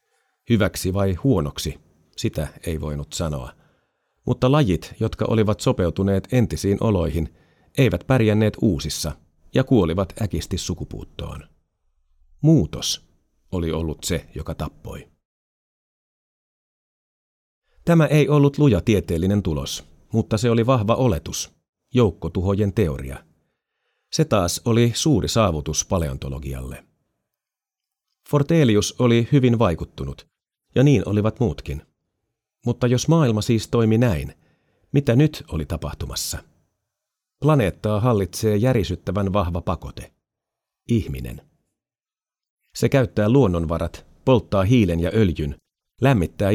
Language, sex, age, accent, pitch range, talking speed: Finnish, male, 40-59, native, 80-115 Hz, 100 wpm